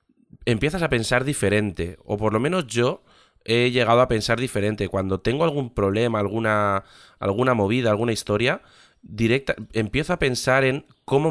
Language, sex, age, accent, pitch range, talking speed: Spanish, male, 20-39, Spanish, 105-125 Hz, 155 wpm